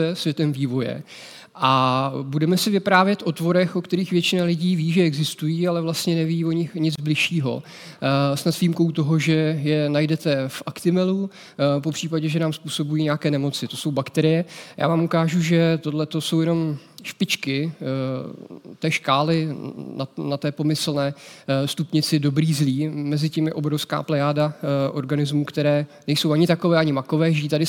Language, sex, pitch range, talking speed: Czech, male, 140-165 Hz, 150 wpm